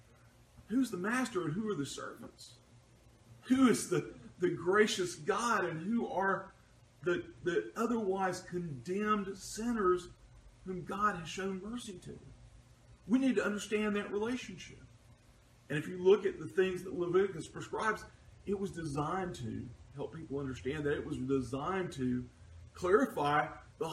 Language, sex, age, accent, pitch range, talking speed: English, male, 40-59, American, 120-195 Hz, 145 wpm